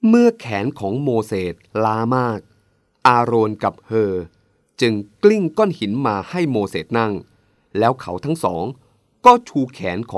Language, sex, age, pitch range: Thai, male, 20-39, 95-150 Hz